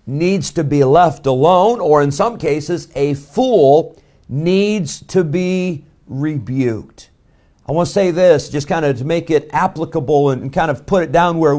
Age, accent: 50-69, American